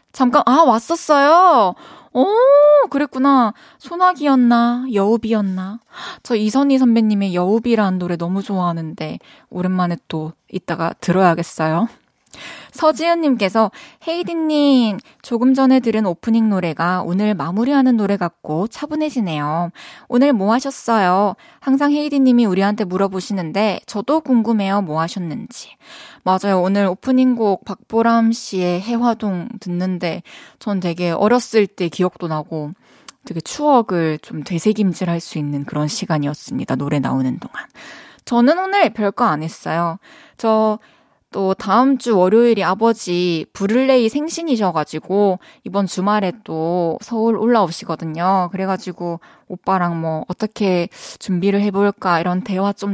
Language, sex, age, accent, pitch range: Korean, female, 20-39, native, 180-250 Hz